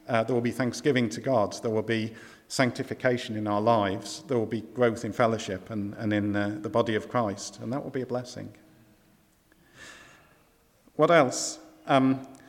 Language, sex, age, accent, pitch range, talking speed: English, male, 50-69, British, 115-140 Hz, 180 wpm